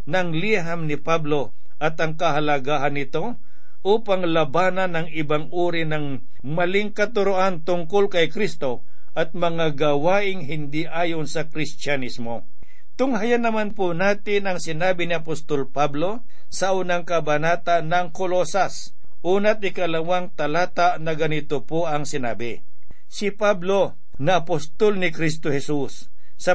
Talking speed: 125 wpm